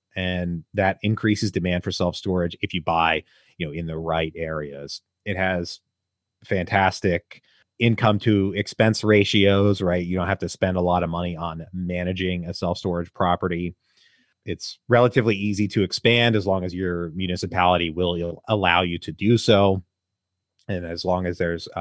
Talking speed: 160 wpm